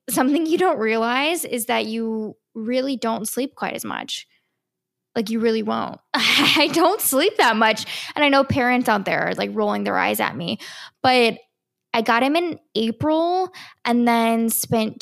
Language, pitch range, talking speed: English, 225-275 Hz, 175 wpm